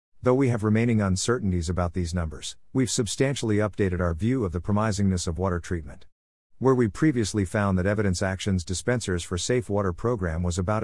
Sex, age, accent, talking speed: male, 50-69, American, 185 wpm